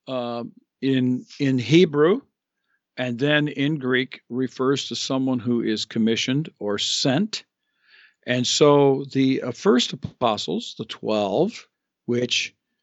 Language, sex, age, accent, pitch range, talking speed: English, male, 50-69, American, 120-150 Hz, 115 wpm